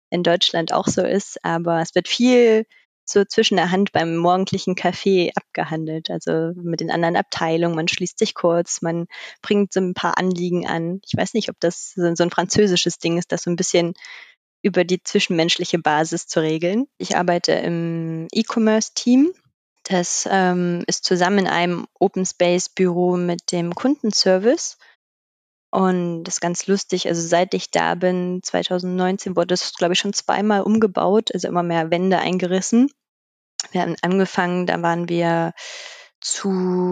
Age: 20-39